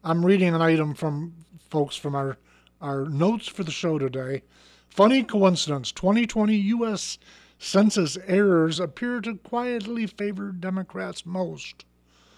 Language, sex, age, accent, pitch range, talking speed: English, male, 50-69, American, 145-185 Hz, 125 wpm